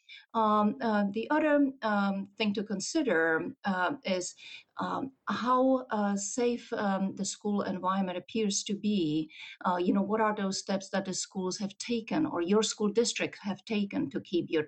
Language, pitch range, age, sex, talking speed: English, 170-215 Hz, 50-69, female, 170 wpm